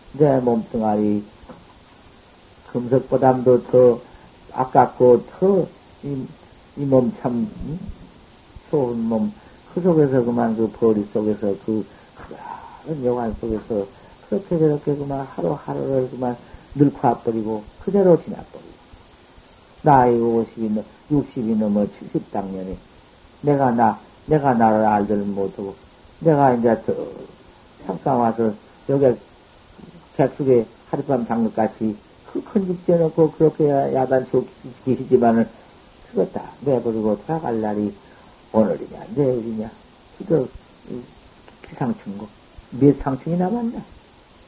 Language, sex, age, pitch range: Korean, male, 50-69, 110-140 Hz